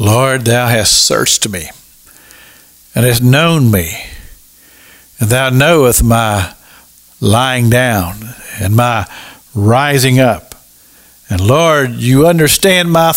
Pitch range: 110-150 Hz